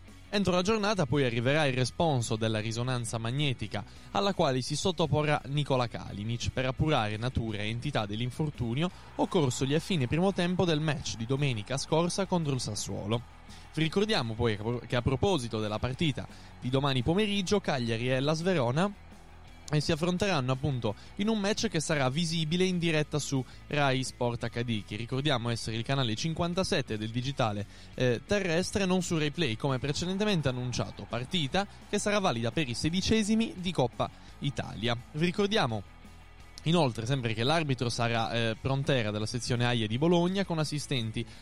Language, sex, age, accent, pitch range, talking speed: Italian, male, 20-39, native, 115-170 Hz, 155 wpm